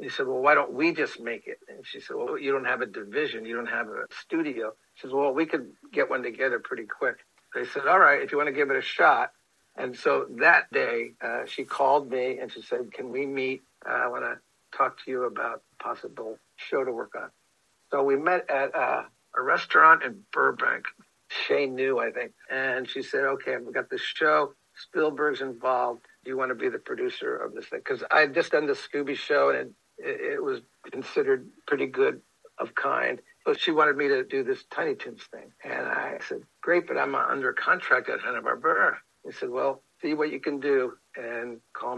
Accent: American